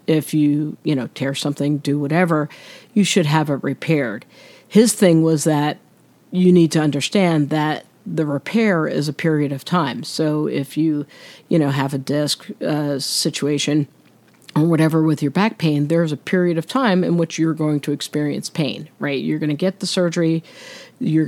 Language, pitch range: English, 145-170 Hz